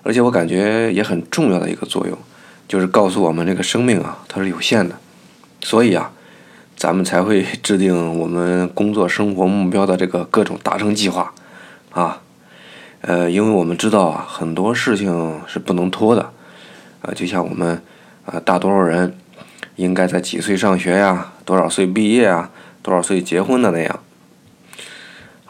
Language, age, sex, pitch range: Chinese, 20-39, male, 85-100 Hz